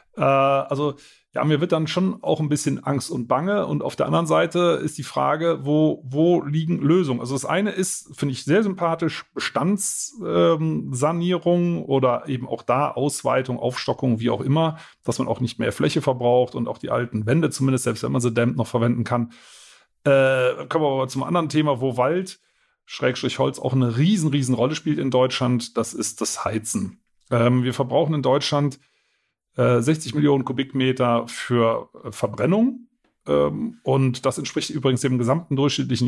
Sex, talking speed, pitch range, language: male, 170 wpm, 125-160 Hz, German